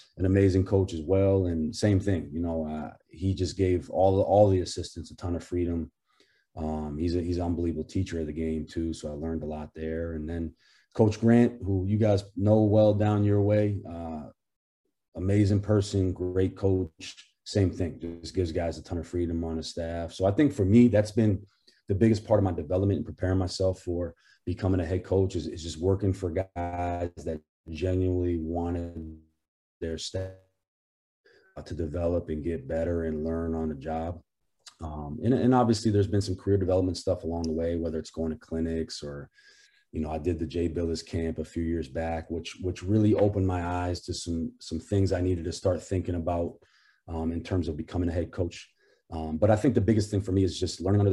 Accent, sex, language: American, male, English